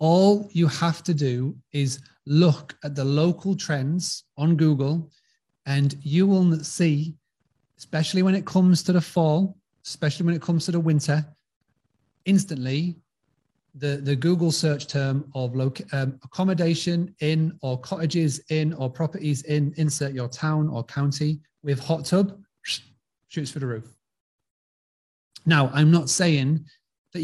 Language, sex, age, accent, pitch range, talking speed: English, male, 30-49, British, 140-165 Hz, 140 wpm